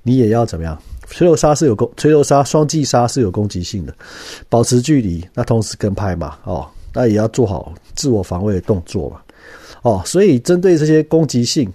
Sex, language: male, Chinese